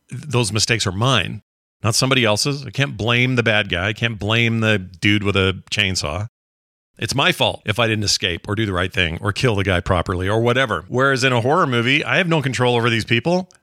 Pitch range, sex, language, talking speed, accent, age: 105-135 Hz, male, English, 230 wpm, American, 40-59